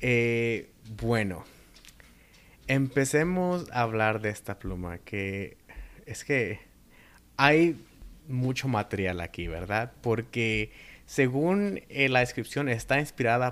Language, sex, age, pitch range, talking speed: Spanish, male, 30-49, 105-130 Hz, 100 wpm